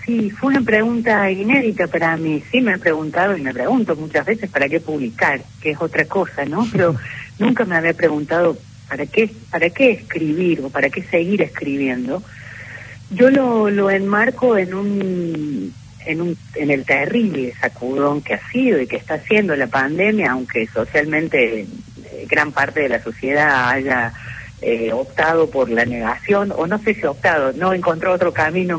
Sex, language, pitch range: female, Spanish, 130-185 Hz